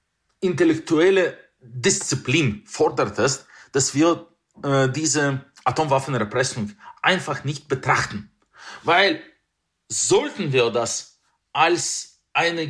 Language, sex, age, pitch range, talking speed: German, male, 40-59, 130-180 Hz, 85 wpm